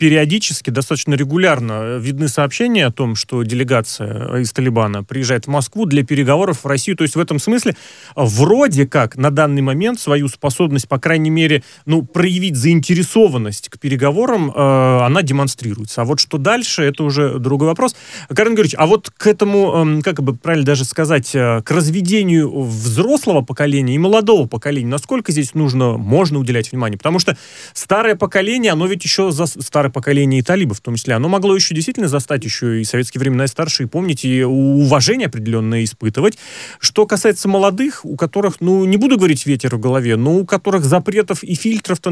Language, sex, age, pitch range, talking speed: Russian, male, 30-49, 130-185 Hz, 175 wpm